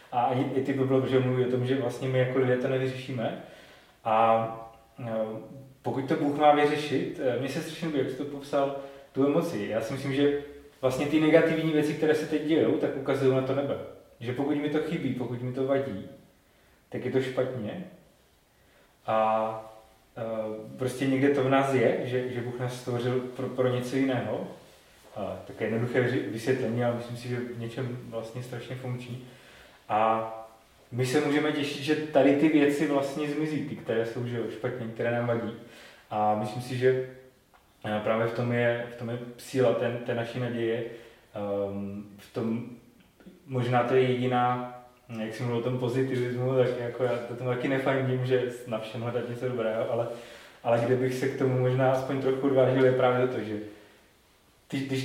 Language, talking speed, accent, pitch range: Czech, 180 wpm, native, 115-135 Hz